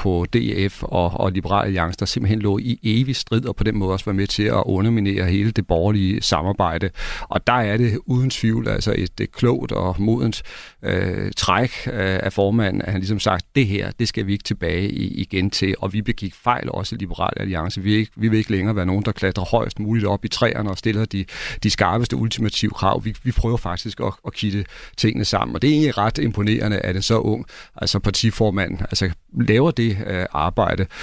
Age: 40-59